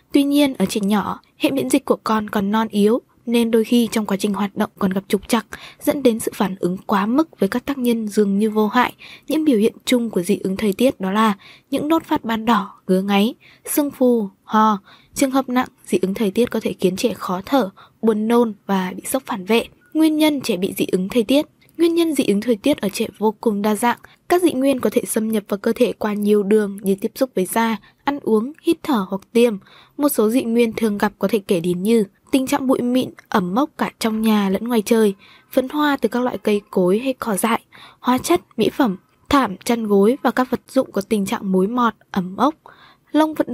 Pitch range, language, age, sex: 205-260 Hz, Vietnamese, 20-39, female